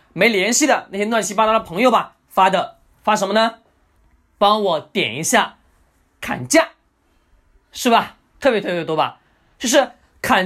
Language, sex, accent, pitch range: Chinese, male, native, 205-280 Hz